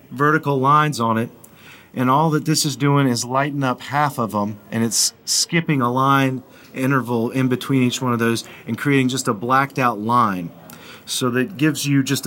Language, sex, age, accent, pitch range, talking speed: English, male, 40-59, American, 115-145 Hz, 195 wpm